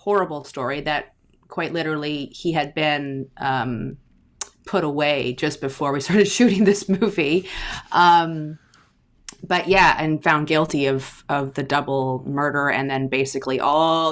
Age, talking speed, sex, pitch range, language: 30-49, 140 wpm, female, 140-190 Hz, English